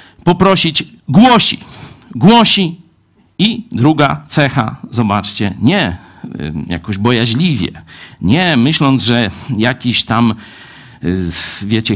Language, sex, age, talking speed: Polish, male, 50-69, 80 wpm